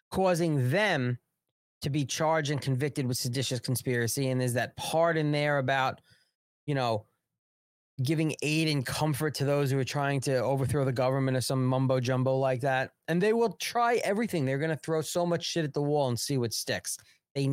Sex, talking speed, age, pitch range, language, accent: male, 200 wpm, 30-49, 125-165 Hz, English, American